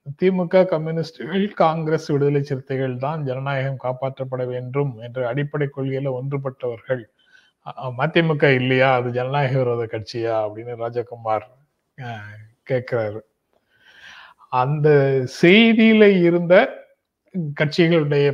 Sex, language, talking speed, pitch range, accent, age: male, Tamil, 85 wpm, 125-160 Hz, native, 30-49